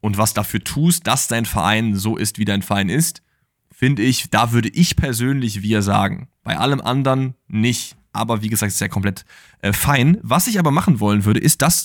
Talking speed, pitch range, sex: 210 wpm, 105-130 Hz, male